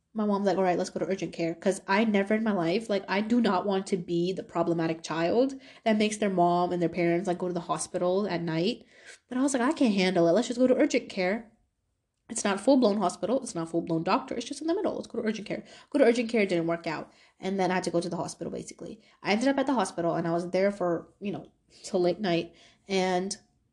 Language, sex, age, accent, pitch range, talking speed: English, female, 20-39, American, 180-275 Hz, 275 wpm